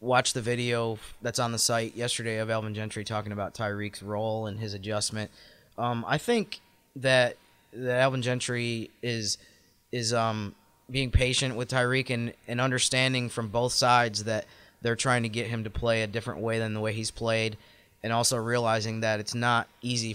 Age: 20-39